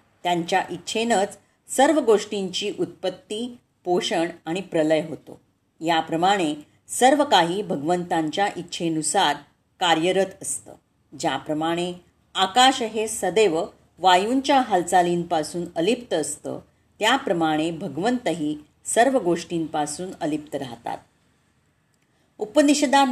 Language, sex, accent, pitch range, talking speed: Marathi, female, native, 165-225 Hz, 80 wpm